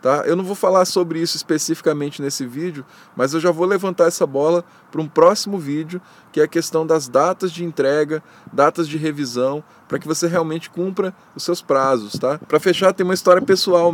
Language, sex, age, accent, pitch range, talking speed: Portuguese, male, 20-39, Brazilian, 135-170 Hz, 200 wpm